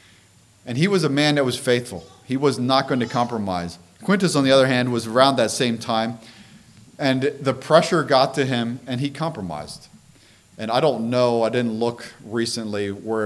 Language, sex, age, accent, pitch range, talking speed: English, male, 40-59, American, 105-145 Hz, 190 wpm